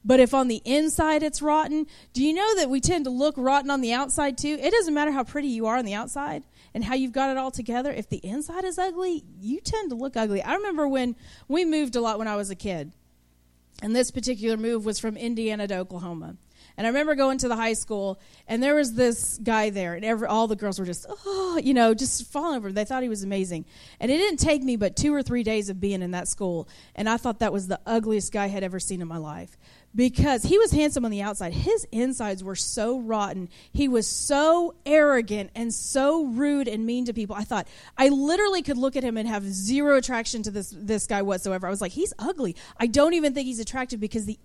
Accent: American